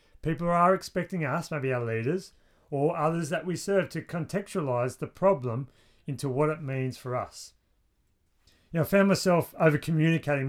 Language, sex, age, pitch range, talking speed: English, male, 40-59, 125-165 Hz, 160 wpm